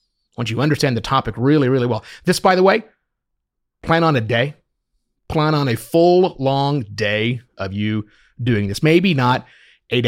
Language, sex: English, male